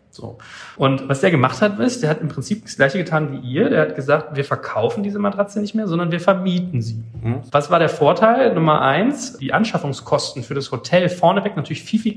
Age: 30-49